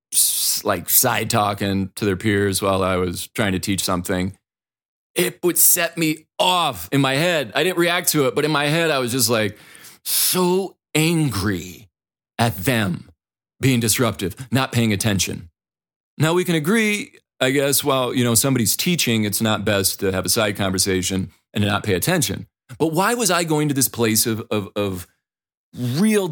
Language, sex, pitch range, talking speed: English, male, 105-150 Hz, 180 wpm